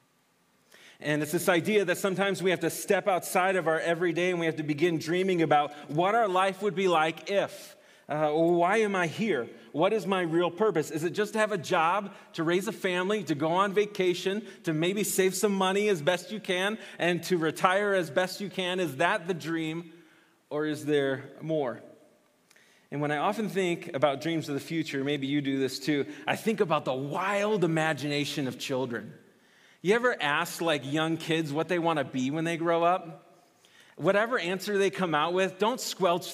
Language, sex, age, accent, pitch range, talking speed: English, male, 30-49, American, 155-205 Hz, 205 wpm